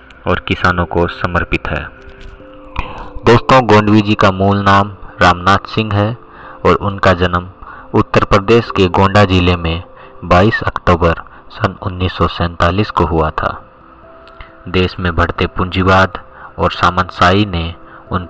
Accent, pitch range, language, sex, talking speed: native, 85-100 Hz, Hindi, male, 125 wpm